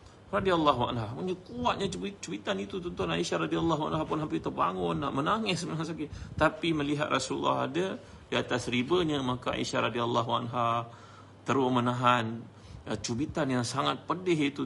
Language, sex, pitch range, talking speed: Malay, male, 110-130 Hz, 140 wpm